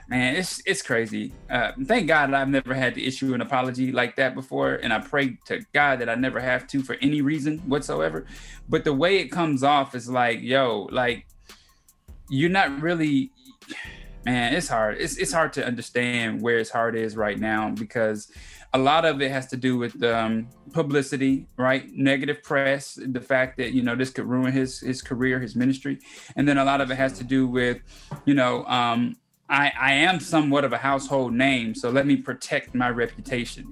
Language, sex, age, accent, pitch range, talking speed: English, male, 20-39, American, 120-140 Hz, 200 wpm